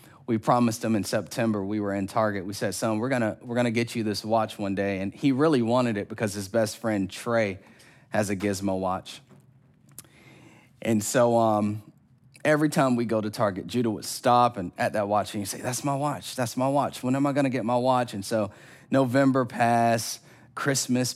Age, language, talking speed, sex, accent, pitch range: 30-49, English, 215 wpm, male, American, 110-130 Hz